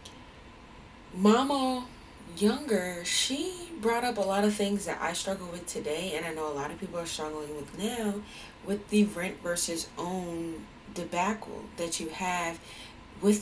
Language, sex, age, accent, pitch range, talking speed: English, female, 20-39, American, 160-210 Hz, 155 wpm